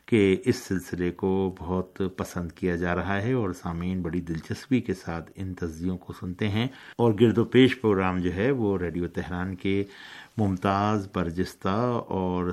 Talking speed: 170 wpm